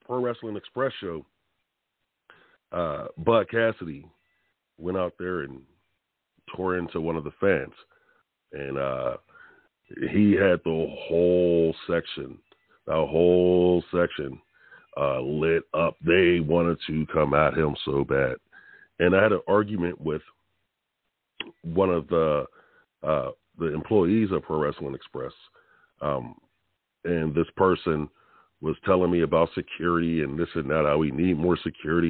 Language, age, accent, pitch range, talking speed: English, 40-59, American, 80-95 Hz, 135 wpm